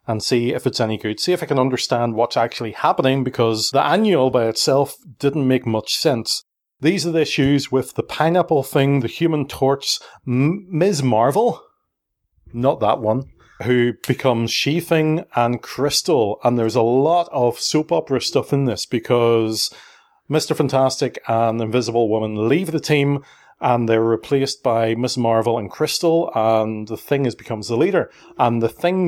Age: 30-49